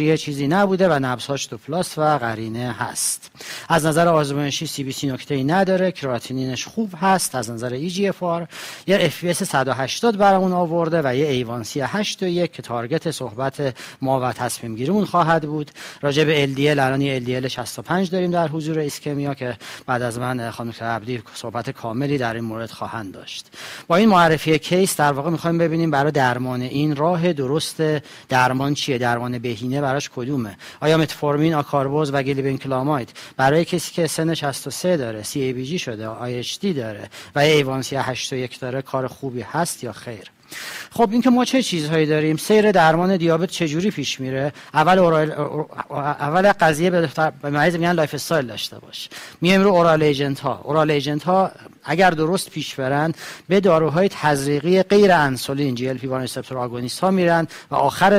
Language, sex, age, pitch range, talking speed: Persian, male, 40-59, 130-170 Hz, 165 wpm